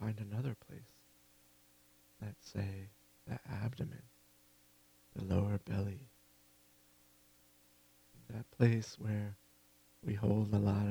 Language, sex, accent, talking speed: English, male, American, 95 wpm